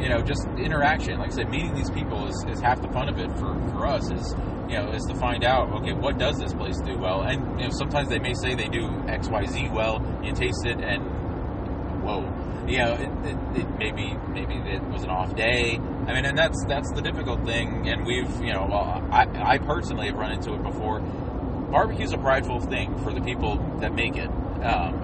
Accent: American